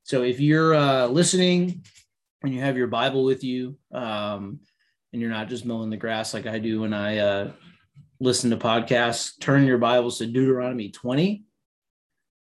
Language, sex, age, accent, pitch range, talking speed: English, male, 30-49, American, 115-140 Hz, 170 wpm